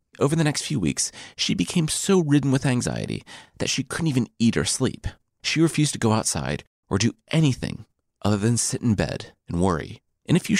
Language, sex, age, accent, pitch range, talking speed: English, male, 30-49, American, 90-135 Hz, 205 wpm